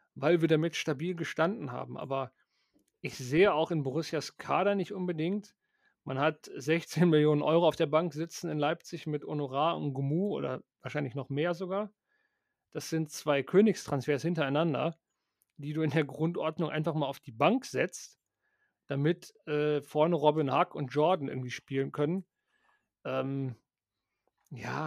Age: 40-59